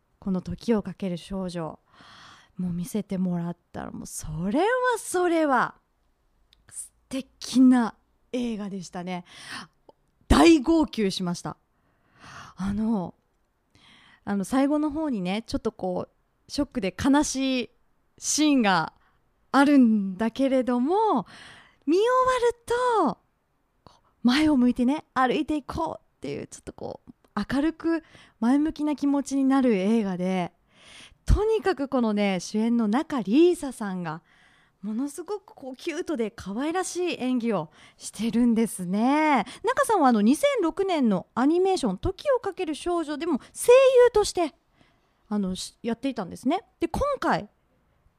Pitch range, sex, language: 200-310 Hz, female, Japanese